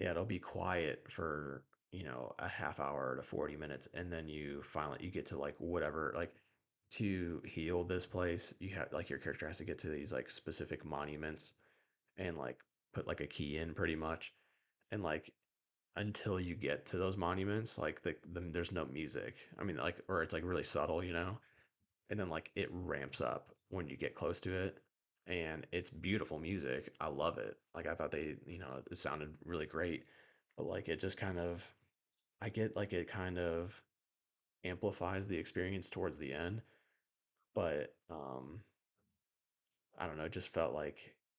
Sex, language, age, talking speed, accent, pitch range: male, English, 30-49, 185 wpm, American, 80-95 Hz